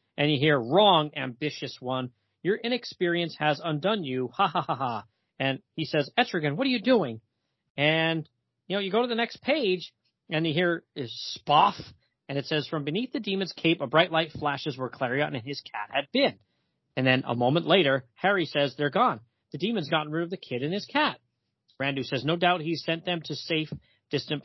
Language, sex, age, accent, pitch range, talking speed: English, male, 40-59, American, 130-175 Hz, 205 wpm